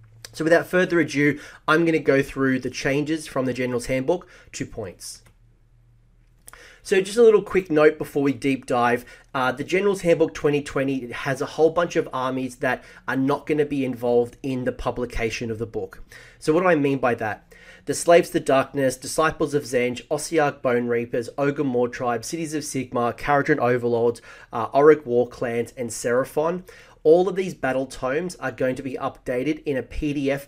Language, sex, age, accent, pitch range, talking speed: English, male, 30-49, Australian, 125-155 Hz, 185 wpm